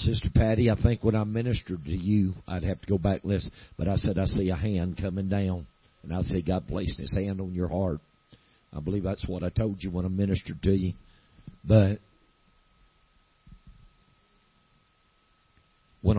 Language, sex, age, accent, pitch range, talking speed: English, male, 50-69, American, 95-120 Hz, 180 wpm